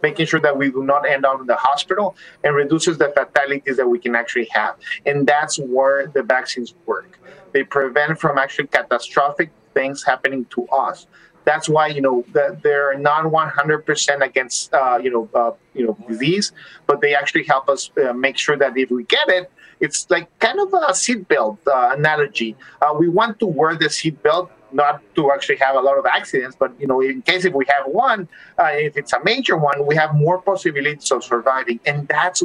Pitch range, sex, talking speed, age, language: 130-160 Hz, male, 205 wpm, 30-49, English